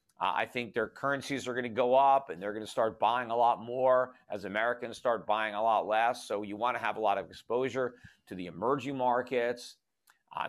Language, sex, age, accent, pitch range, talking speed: English, male, 50-69, American, 110-130 Hz, 230 wpm